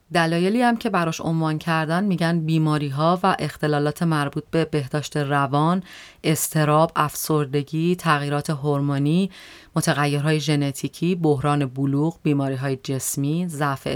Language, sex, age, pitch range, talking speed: Persian, female, 30-49, 145-180 Hz, 115 wpm